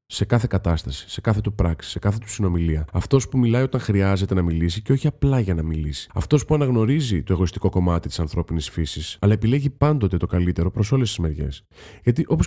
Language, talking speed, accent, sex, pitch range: Greek, 210 wpm, native, male, 90-145 Hz